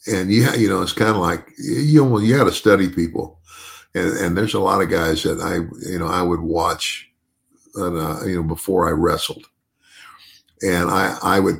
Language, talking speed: English, 200 wpm